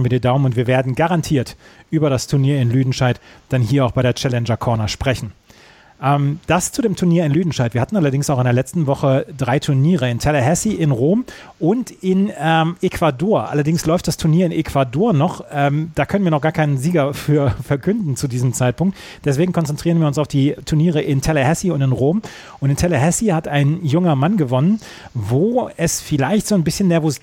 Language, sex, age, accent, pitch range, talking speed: German, male, 30-49, German, 130-170 Hz, 200 wpm